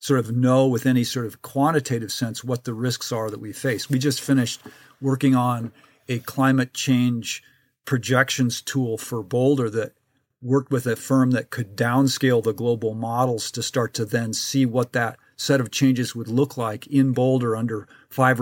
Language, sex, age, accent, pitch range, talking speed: English, male, 50-69, American, 115-130 Hz, 180 wpm